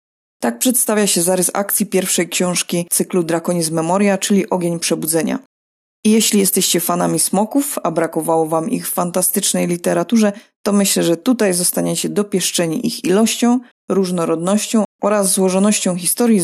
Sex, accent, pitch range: female, native, 170-210 Hz